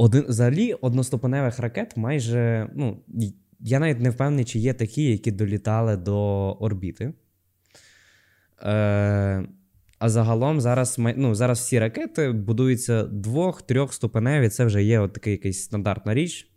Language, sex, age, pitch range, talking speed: Ukrainian, male, 20-39, 100-125 Hz, 120 wpm